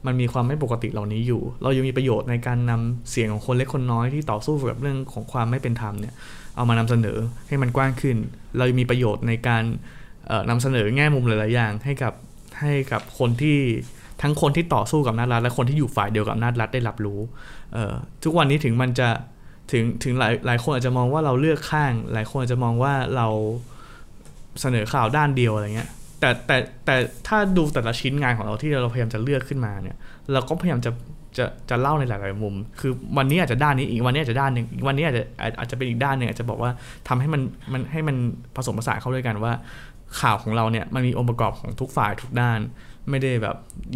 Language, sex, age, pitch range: Thai, male, 20-39, 115-135 Hz